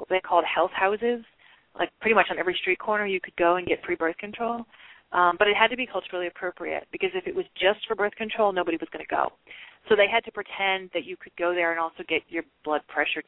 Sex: female